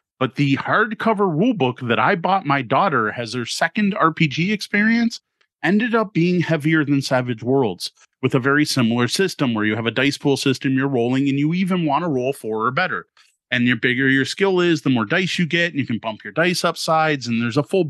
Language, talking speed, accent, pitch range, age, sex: English, 220 wpm, American, 130-170 Hz, 30-49, male